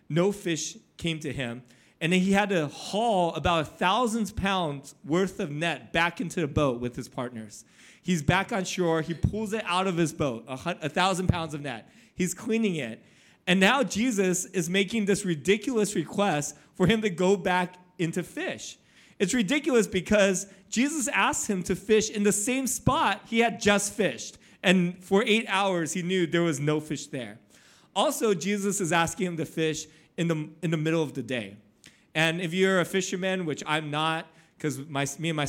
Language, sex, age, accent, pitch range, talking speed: English, male, 30-49, American, 150-195 Hz, 195 wpm